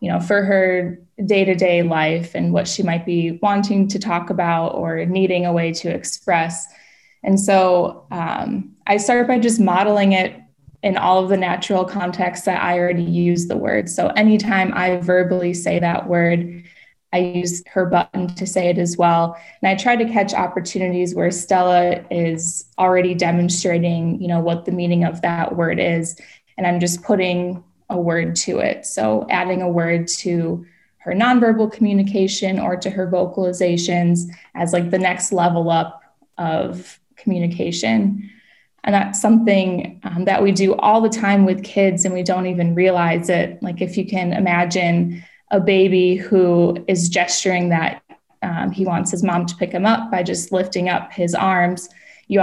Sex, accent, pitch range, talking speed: female, American, 175-195 Hz, 175 wpm